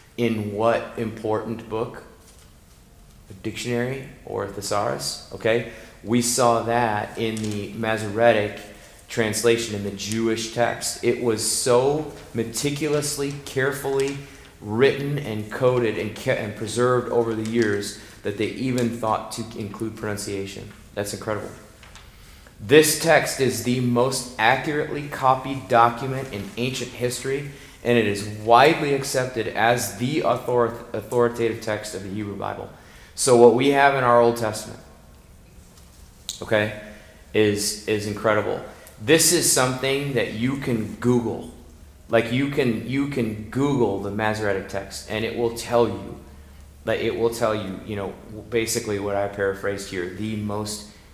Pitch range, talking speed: 105-125 Hz, 135 wpm